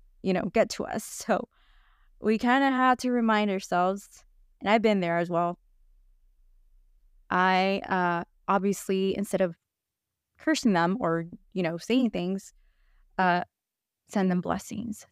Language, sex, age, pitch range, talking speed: English, female, 20-39, 185-225 Hz, 140 wpm